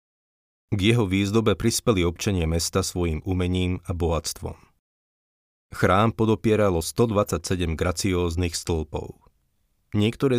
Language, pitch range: Slovak, 85-100 Hz